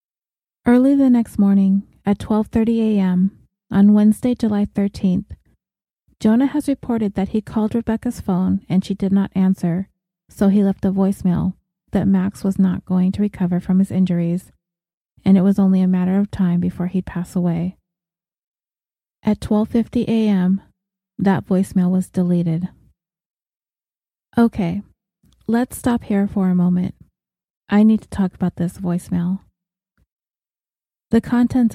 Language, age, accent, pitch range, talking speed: English, 30-49, American, 180-210 Hz, 135 wpm